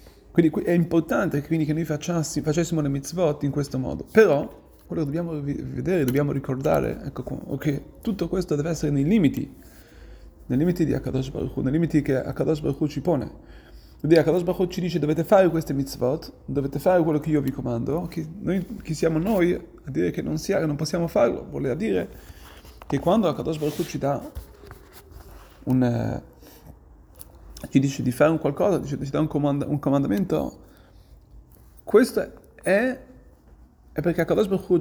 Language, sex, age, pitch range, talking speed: Italian, male, 30-49, 135-175 Hz, 175 wpm